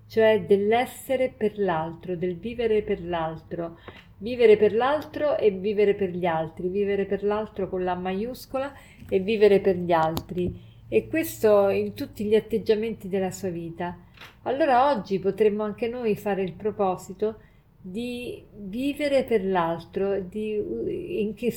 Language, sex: Italian, female